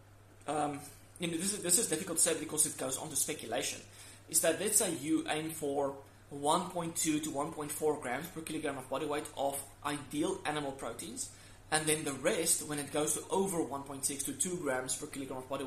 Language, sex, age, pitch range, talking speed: English, male, 20-39, 130-155 Hz, 200 wpm